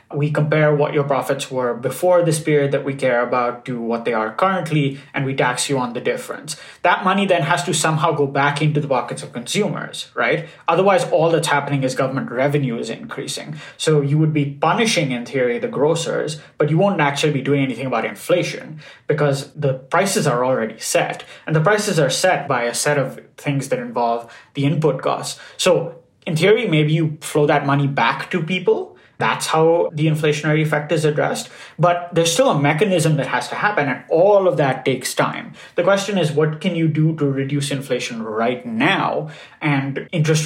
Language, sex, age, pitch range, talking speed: English, male, 20-39, 135-165 Hz, 200 wpm